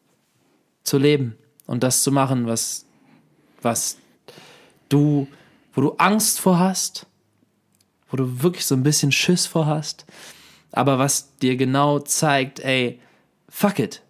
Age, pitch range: 20-39, 130-175 Hz